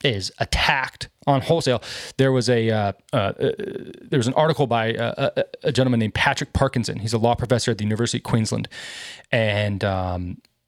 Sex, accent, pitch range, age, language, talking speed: male, American, 110-140 Hz, 20-39, English, 185 wpm